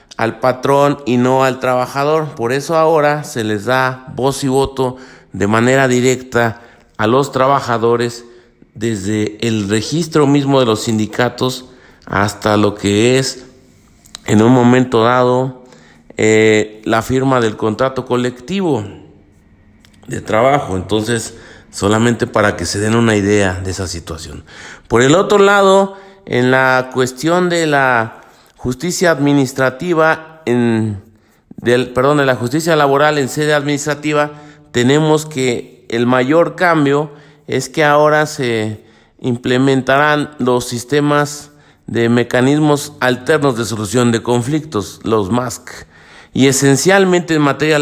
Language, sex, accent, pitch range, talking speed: Spanish, male, Mexican, 115-140 Hz, 125 wpm